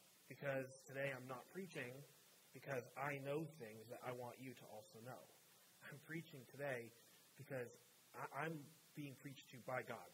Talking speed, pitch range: 155 wpm, 120-150 Hz